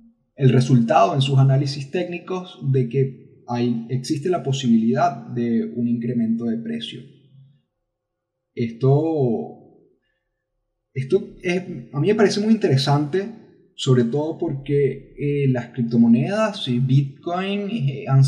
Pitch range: 120-165 Hz